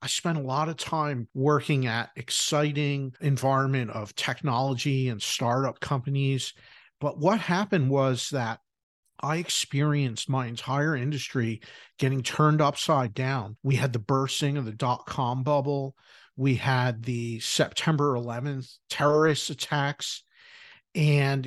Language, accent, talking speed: English, American, 130 wpm